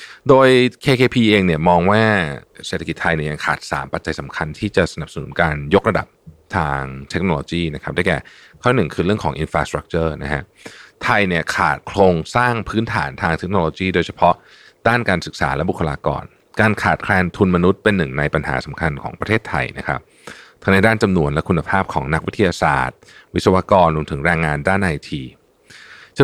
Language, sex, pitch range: Thai, male, 75-100 Hz